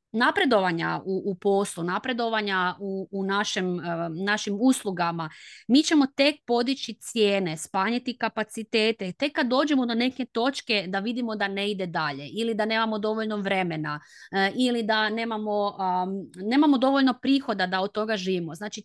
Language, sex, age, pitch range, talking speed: Croatian, female, 20-39, 190-235 Hz, 145 wpm